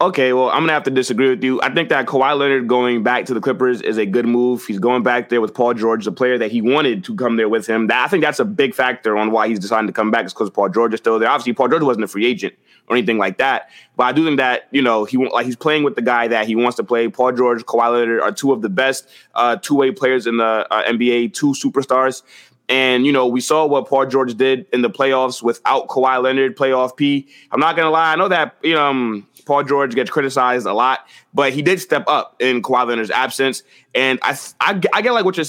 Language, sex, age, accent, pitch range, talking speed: English, male, 20-39, American, 120-145 Hz, 270 wpm